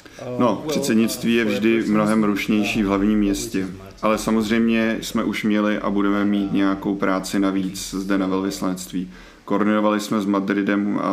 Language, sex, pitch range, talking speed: Czech, male, 95-105 Hz, 145 wpm